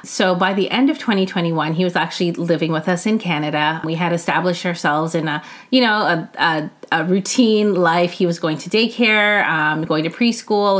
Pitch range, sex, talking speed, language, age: 165-220 Hz, female, 200 wpm, English, 30-49